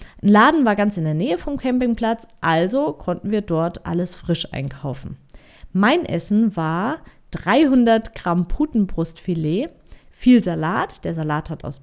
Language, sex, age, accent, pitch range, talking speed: German, female, 30-49, German, 160-215 Hz, 140 wpm